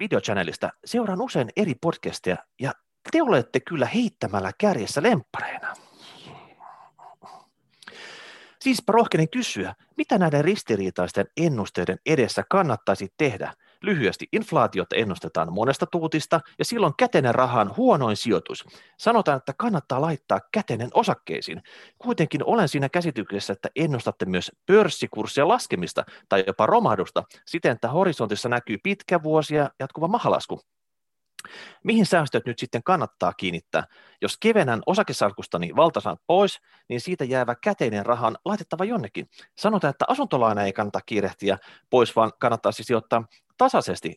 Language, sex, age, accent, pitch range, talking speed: Finnish, male, 30-49, native, 115-185 Hz, 120 wpm